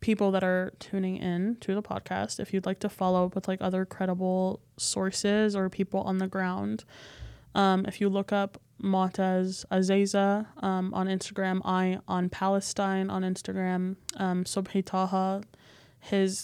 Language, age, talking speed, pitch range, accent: English, 20-39, 155 wpm, 180-190 Hz, American